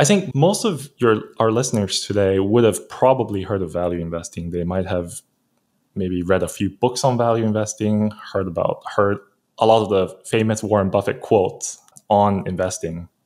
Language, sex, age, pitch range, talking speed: English, male, 20-39, 95-130 Hz, 175 wpm